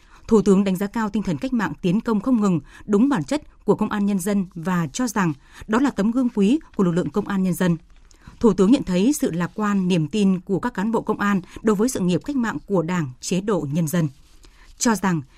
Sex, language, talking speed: female, Vietnamese, 255 wpm